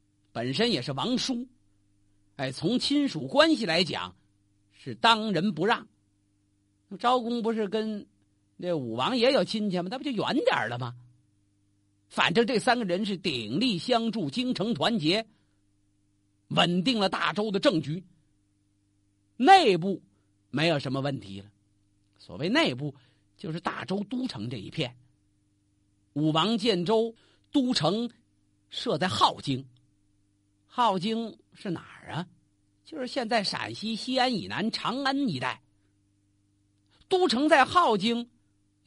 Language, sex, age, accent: Chinese, male, 50-69, native